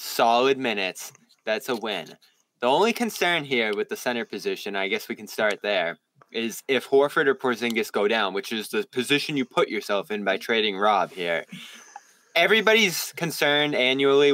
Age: 20-39